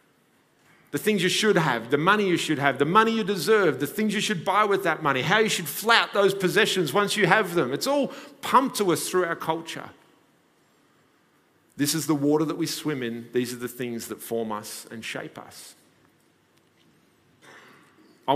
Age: 40-59